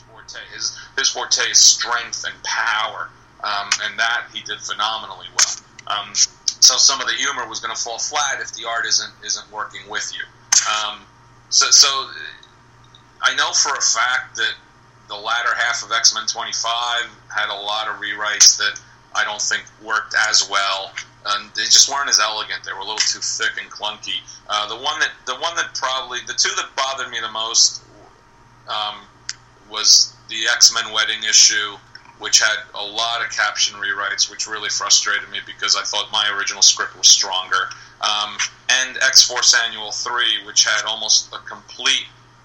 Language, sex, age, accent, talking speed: English, male, 40-59, American, 180 wpm